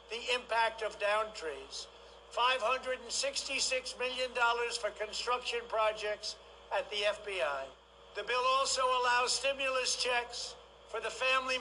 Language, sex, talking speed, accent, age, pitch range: English, male, 115 wpm, American, 60-79, 215-255 Hz